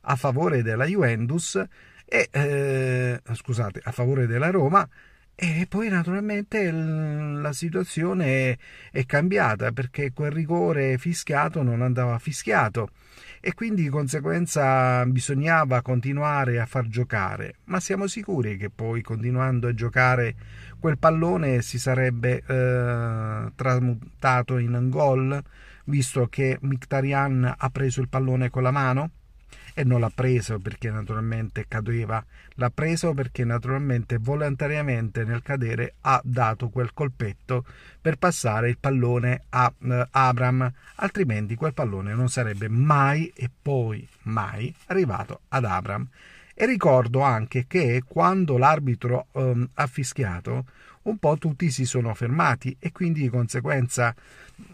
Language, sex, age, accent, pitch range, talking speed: Italian, male, 50-69, native, 120-150 Hz, 125 wpm